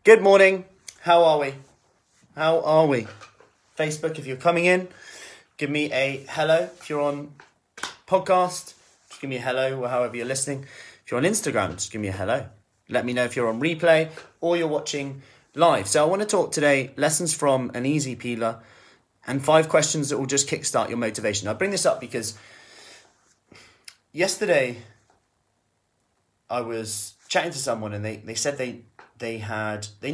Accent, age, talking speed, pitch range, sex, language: British, 30-49, 175 wpm, 110-150 Hz, male, English